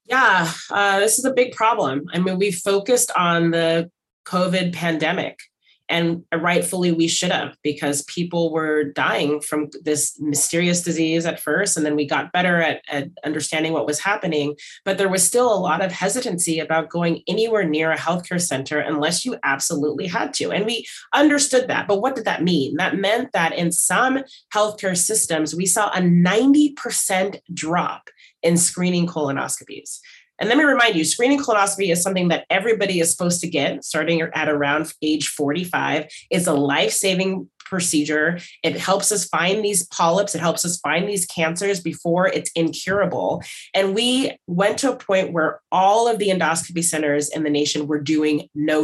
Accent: American